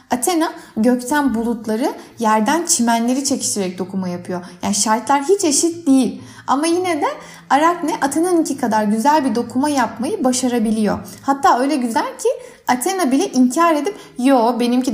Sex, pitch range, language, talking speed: female, 220-315 Hz, Turkish, 135 wpm